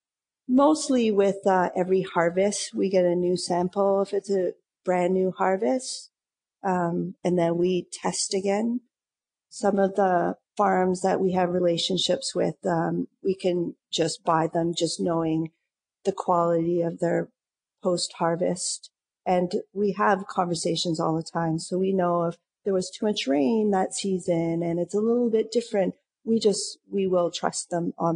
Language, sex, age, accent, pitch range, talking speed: English, female, 40-59, American, 170-200 Hz, 160 wpm